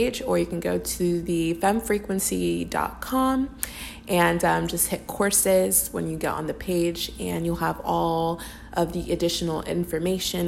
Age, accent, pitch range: 20-39, American, 165-190 Hz